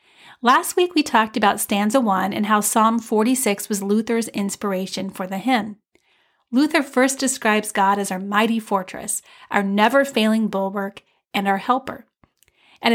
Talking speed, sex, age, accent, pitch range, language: 150 wpm, female, 40-59, American, 205-250 Hz, English